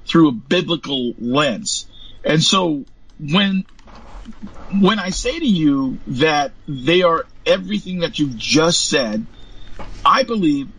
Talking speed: 120 wpm